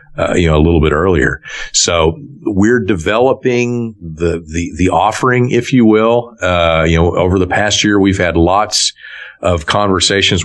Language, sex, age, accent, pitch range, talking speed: English, male, 50-69, American, 80-100 Hz, 165 wpm